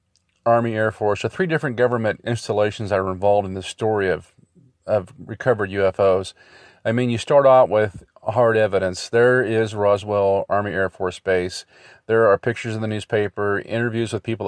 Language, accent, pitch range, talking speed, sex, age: English, American, 100-125 Hz, 175 wpm, male, 40-59